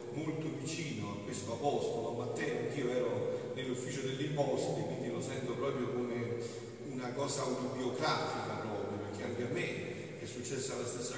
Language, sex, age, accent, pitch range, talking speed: Italian, male, 40-59, native, 120-140 Hz, 160 wpm